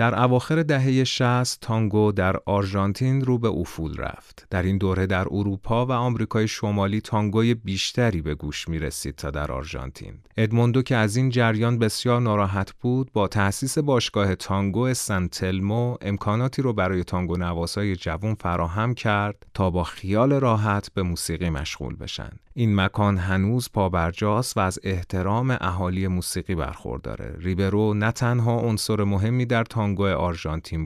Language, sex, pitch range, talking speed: Persian, male, 85-115 Hz, 140 wpm